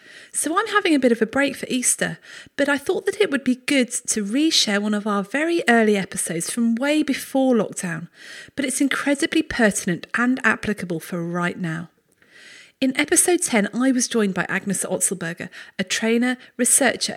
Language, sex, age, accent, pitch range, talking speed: English, female, 40-59, British, 200-265 Hz, 180 wpm